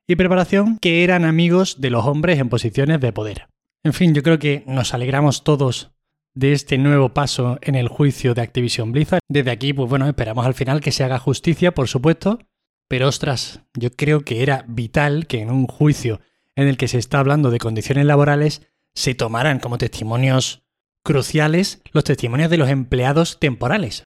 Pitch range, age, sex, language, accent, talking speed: 130-160 Hz, 20-39, male, Spanish, Spanish, 185 wpm